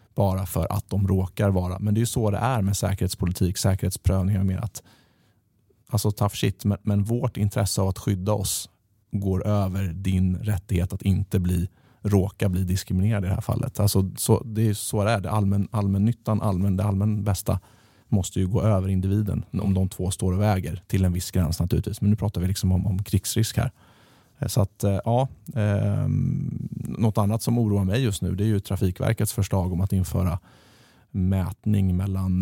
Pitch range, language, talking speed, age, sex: 95-110 Hz, Swedish, 190 wpm, 30-49, male